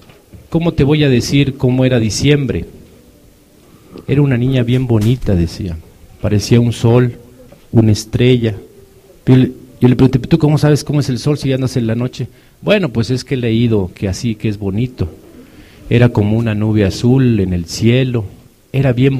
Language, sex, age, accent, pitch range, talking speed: Spanish, male, 50-69, Mexican, 100-125 Hz, 180 wpm